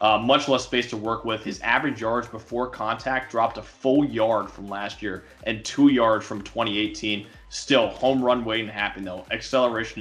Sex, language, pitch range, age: male, English, 110-130 Hz, 20-39